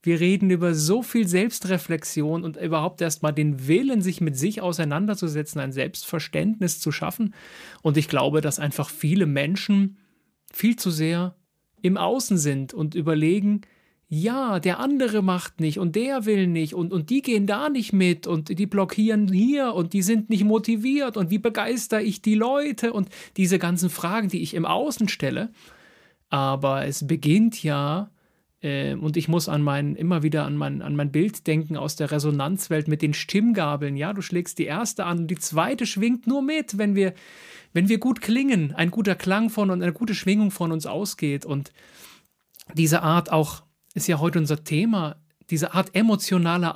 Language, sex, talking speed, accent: German, male, 175 wpm, German